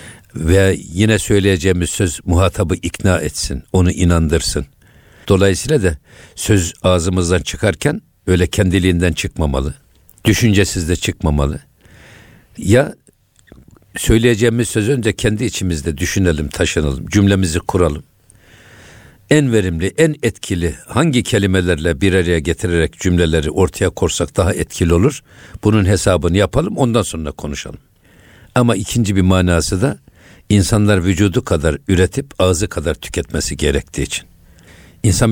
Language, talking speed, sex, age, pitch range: Turkish, 110 wpm, male, 60-79, 85-105 Hz